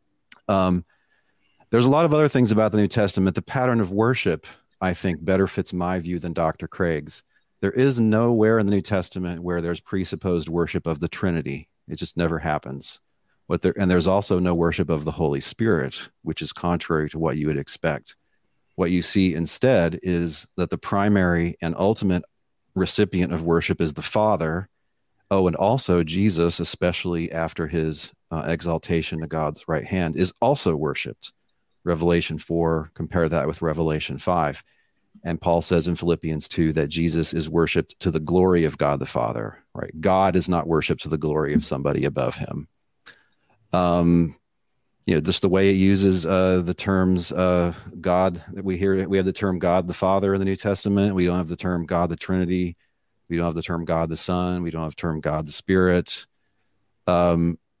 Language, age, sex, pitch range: English, 40-59, male, 85-95 Hz